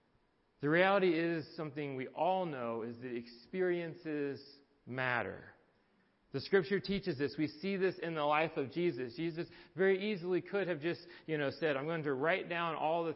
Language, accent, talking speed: English, American, 180 wpm